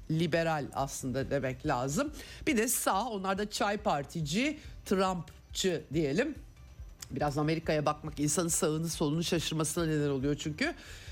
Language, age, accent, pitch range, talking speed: Turkish, 50-69, native, 150-230 Hz, 125 wpm